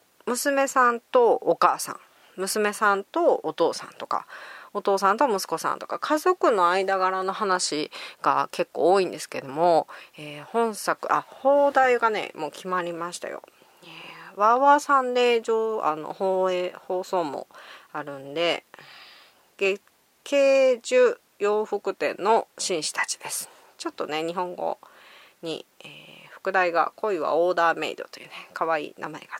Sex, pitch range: female, 180-285 Hz